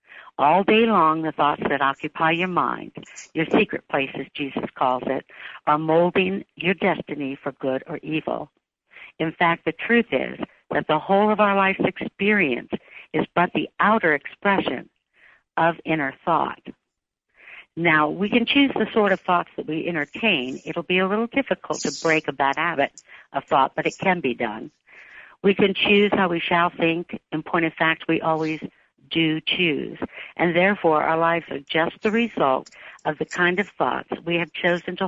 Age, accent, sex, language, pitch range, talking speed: 60-79, American, female, English, 150-190 Hz, 180 wpm